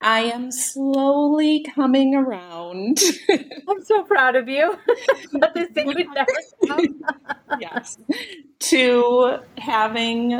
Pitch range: 165-255 Hz